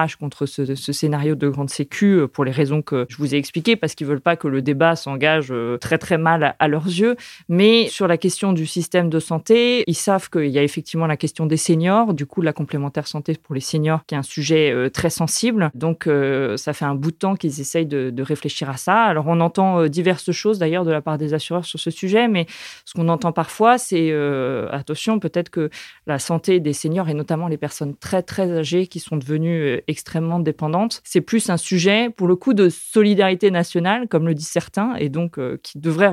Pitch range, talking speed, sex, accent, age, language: 150-180 Hz, 225 wpm, female, French, 30-49, French